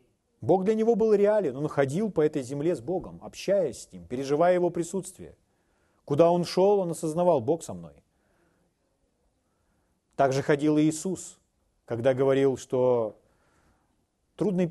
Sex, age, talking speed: male, 40-59, 145 wpm